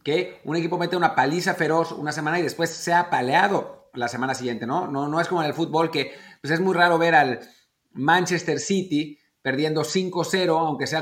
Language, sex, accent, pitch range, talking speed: Spanish, male, Mexican, 140-180 Hz, 200 wpm